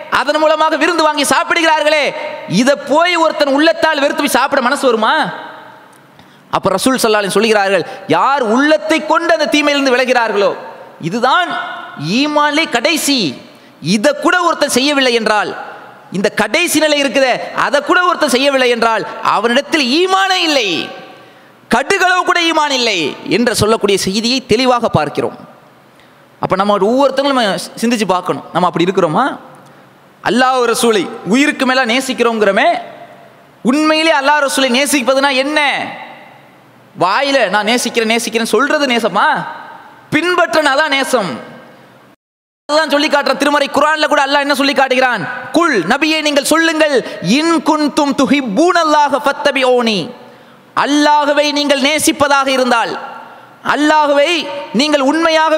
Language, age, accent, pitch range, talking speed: English, 20-39, Indian, 250-310 Hz, 120 wpm